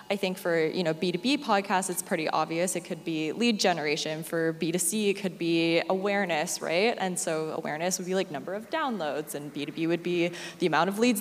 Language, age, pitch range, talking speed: English, 20-39, 170-210 Hz, 210 wpm